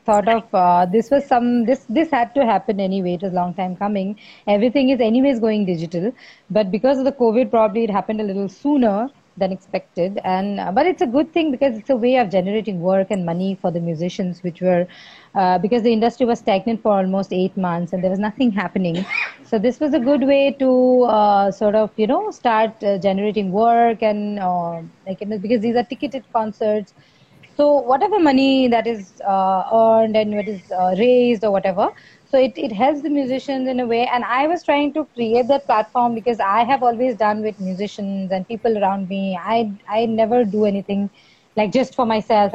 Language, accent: English, Indian